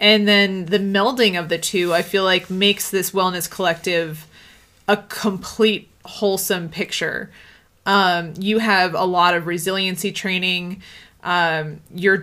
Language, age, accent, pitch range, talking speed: English, 20-39, American, 170-200 Hz, 135 wpm